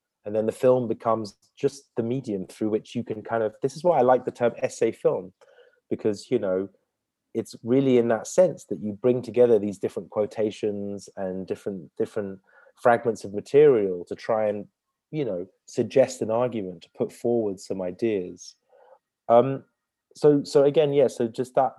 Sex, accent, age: male, British, 30-49